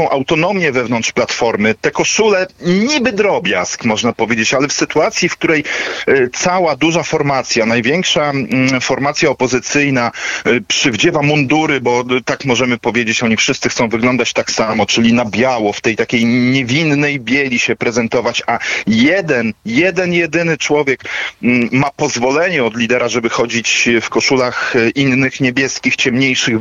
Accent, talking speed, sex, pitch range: native, 130 wpm, male, 120-160 Hz